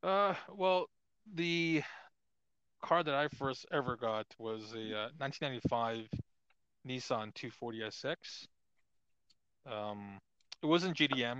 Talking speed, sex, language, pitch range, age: 100 wpm, male, English, 110-150 Hz, 20-39